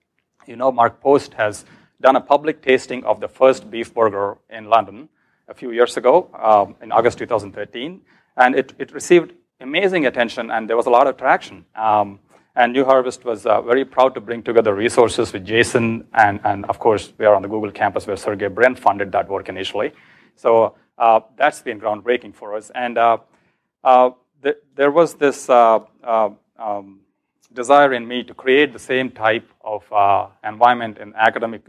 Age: 40-59